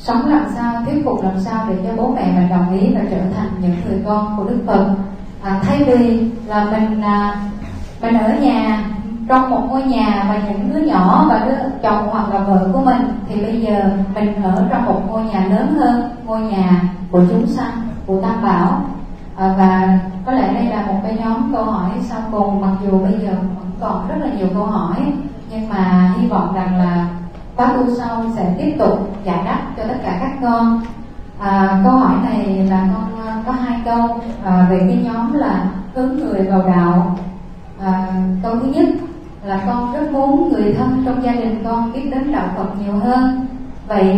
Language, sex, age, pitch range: Vietnamese, female, 20-39, 195-240 Hz